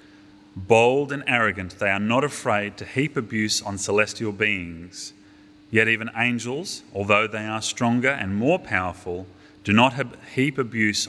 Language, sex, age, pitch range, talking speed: English, male, 30-49, 100-120 Hz, 145 wpm